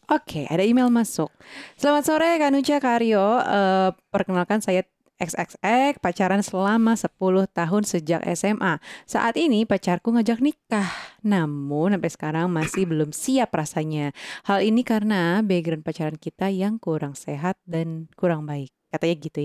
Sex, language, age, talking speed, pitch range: female, Indonesian, 20-39, 140 wpm, 155-205 Hz